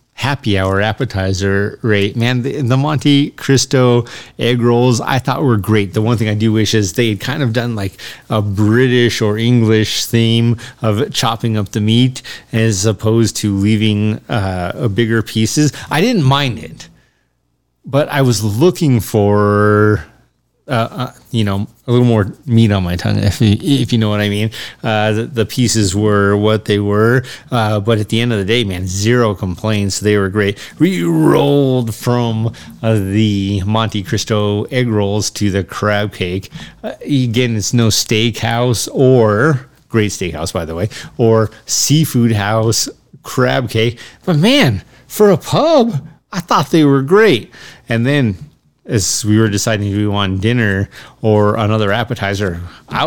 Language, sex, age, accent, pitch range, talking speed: English, male, 30-49, American, 105-135 Hz, 165 wpm